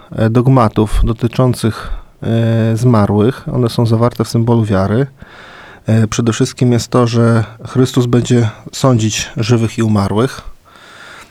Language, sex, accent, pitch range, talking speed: Polish, male, native, 115-135 Hz, 105 wpm